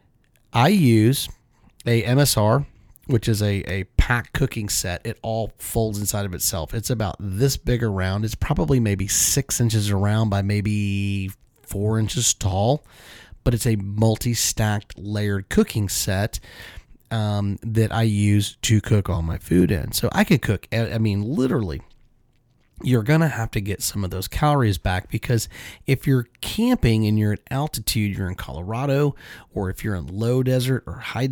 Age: 30-49